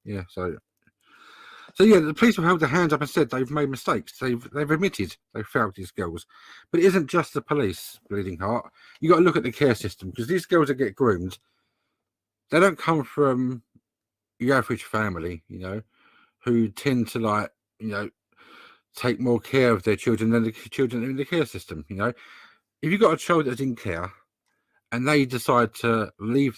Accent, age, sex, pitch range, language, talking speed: British, 50-69, male, 110-155 Hz, English, 200 wpm